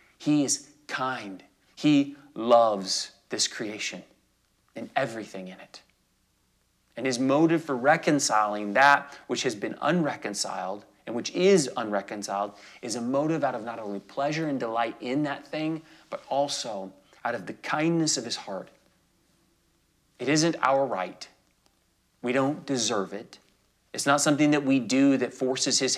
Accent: American